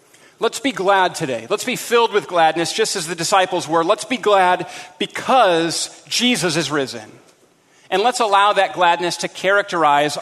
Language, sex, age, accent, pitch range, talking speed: English, male, 40-59, American, 160-200 Hz, 165 wpm